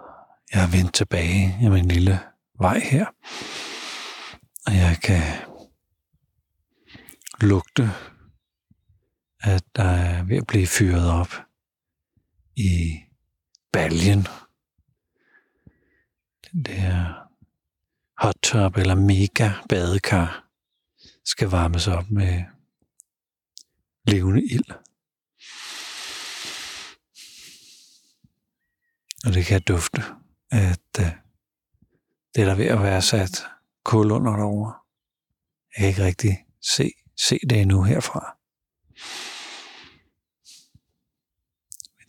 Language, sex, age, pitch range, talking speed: Danish, male, 60-79, 90-105 Hz, 85 wpm